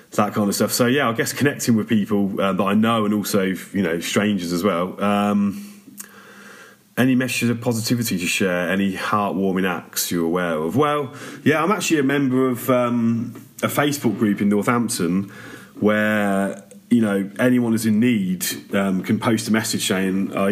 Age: 30-49